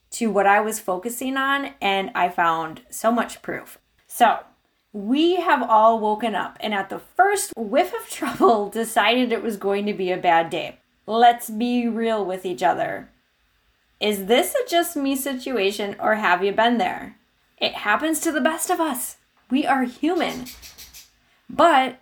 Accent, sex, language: American, female, English